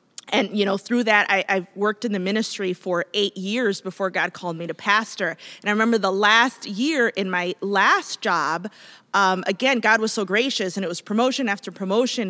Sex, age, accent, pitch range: female, 20-39, American, 195-250 Hz